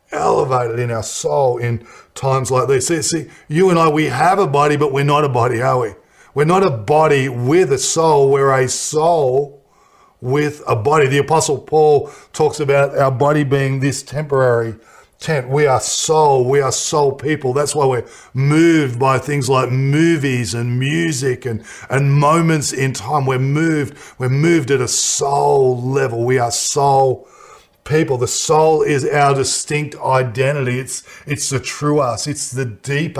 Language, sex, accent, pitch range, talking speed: English, male, Australian, 130-150 Hz, 175 wpm